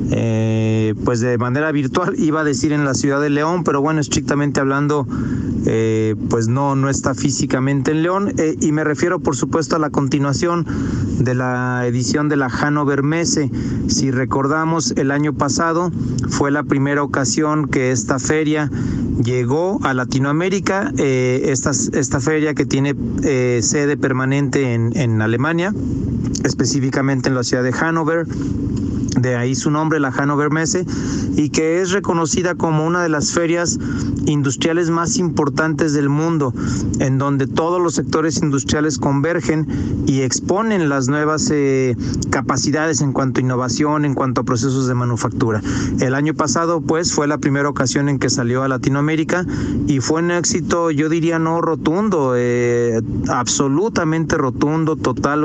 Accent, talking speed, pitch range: Mexican, 155 wpm, 130-155 Hz